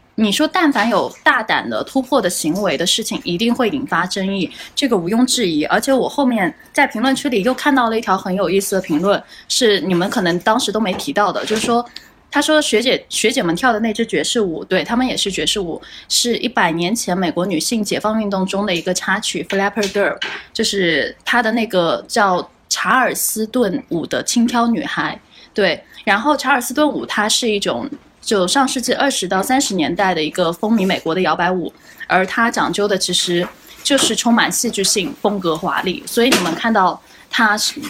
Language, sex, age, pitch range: Chinese, female, 10-29, 185-250 Hz